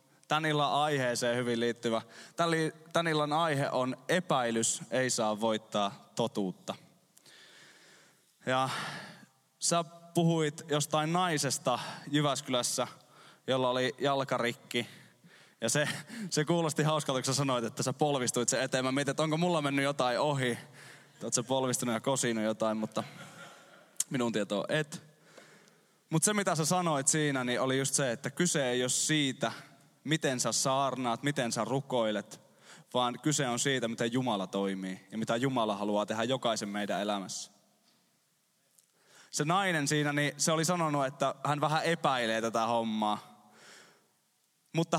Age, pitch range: 20-39, 120-160 Hz